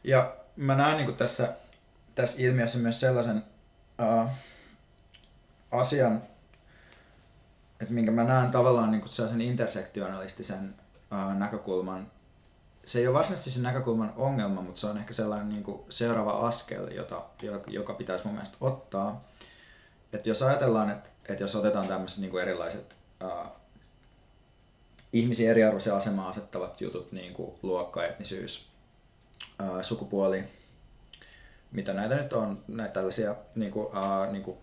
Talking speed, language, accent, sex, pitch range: 125 wpm, Finnish, native, male, 100-125 Hz